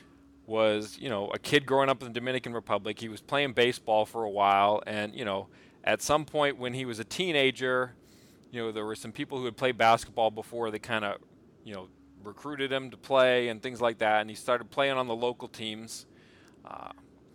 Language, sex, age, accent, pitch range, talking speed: English, male, 40-59, American, 110-135 Hz, 215 wpm